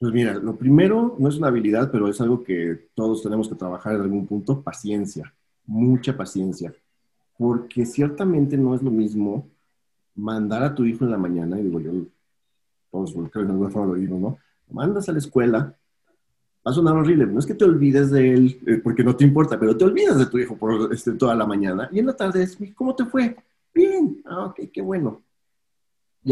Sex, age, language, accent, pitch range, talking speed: male, 40-59, Spanish, Mexican, 110-150 Hz, 200 wpm